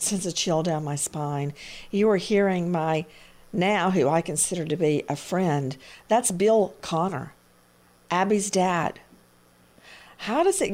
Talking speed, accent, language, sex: 145 wpm, American, English, female